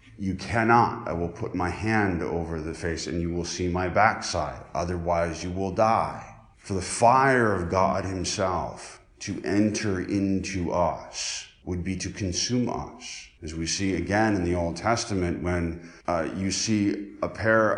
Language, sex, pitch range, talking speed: English, male, 85-105 Hz, 165 wpm